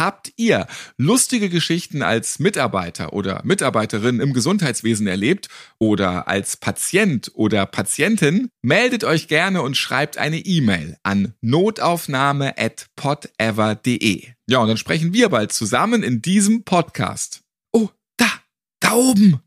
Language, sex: German, male